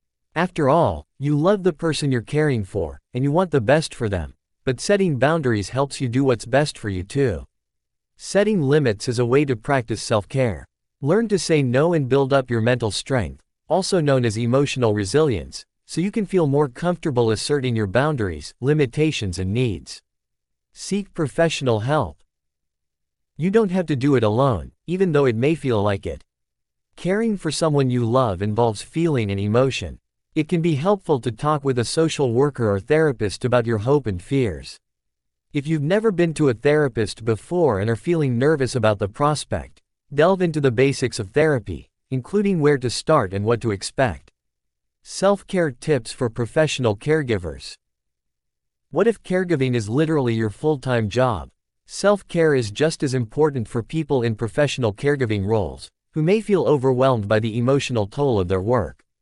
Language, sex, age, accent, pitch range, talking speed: English, male, 50-69, American, 105-155 Hz, 170 wpm